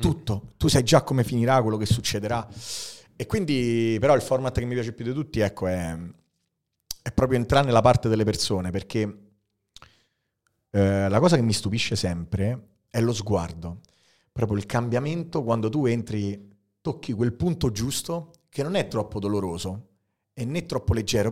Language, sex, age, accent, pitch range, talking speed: Italian, male, 30-49, native, 105-130 Hz, 165 wpm